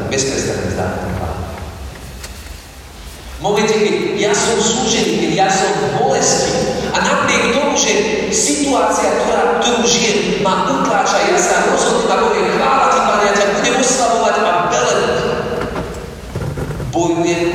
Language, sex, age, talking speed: Czech, male, 40-59, 115 wpm